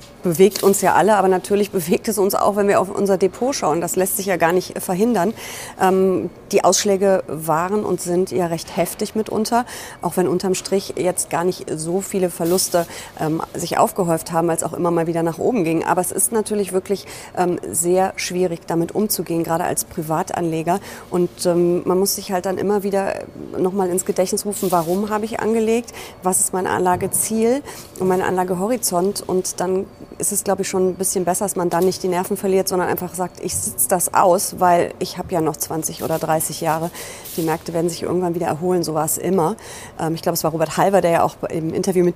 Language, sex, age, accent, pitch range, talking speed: German, female, 30-49, German, 165-195 Hz, 205 wpm